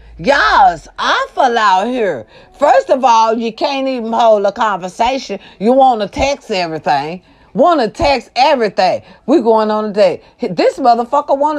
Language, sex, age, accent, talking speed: English, female, 40-59, American, 160 wpm